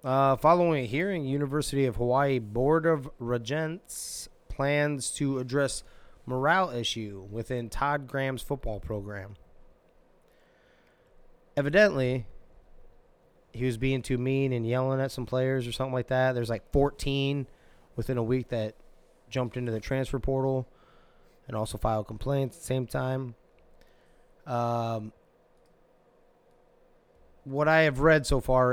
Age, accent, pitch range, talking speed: 20-39, American, 115-135 Hz, 130 wpm